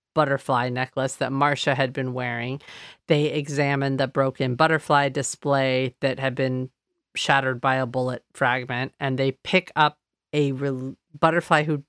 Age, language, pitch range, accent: 40-59, English, 135-160 Hz, American